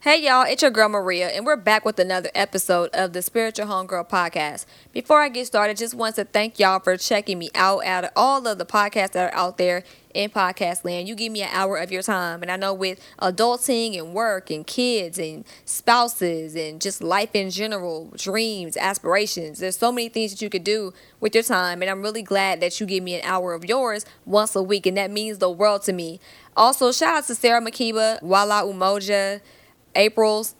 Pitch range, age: 185-225 Hz, 20-39